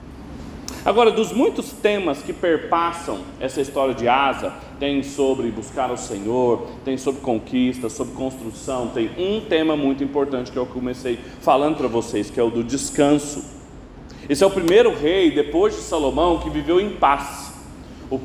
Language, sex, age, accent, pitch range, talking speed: Portuguese, male, 40-59, Brazilian, 145-215 Hz, 160 wpm